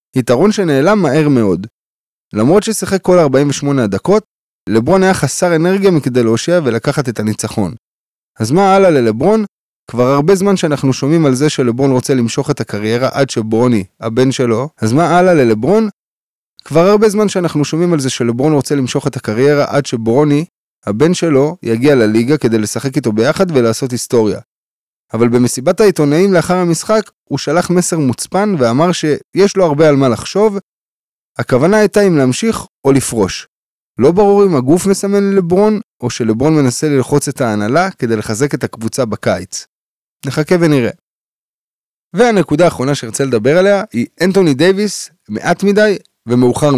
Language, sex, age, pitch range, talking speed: Hebrew, male, 20-39, 125-185 Hz, 140 wpm